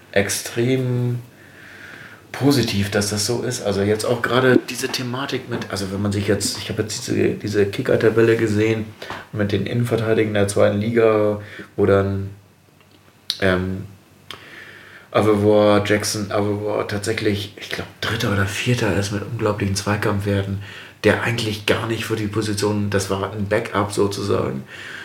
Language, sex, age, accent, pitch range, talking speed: German, male, 30-49, German, 100-115 Hz, 140 wpm